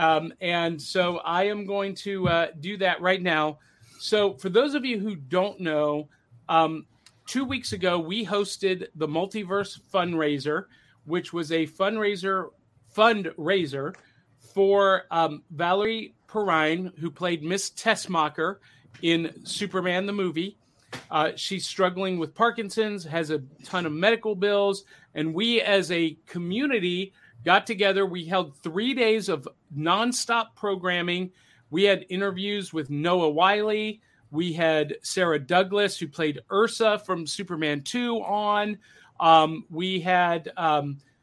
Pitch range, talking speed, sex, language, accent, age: 160-205 Hz, 135 wpm, male, English, American, 40-59